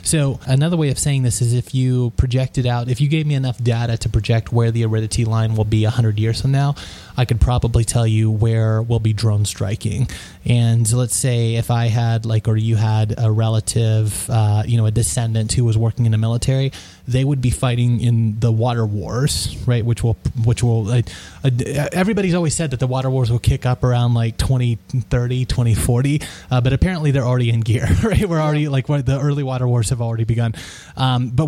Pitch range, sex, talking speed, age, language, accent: 115-130 Hz, male, 210 wpm, 20-39, English, American